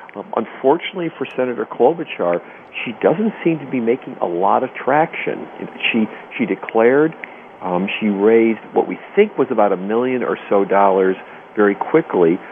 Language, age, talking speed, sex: English, 50-69, 155 wpm, male